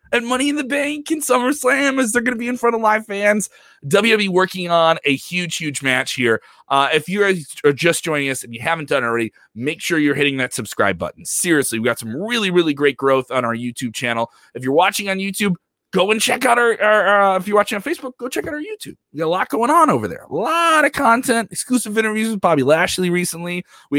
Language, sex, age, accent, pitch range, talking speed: English, male, 30-49, American, 140-215 Hz, 250 wpm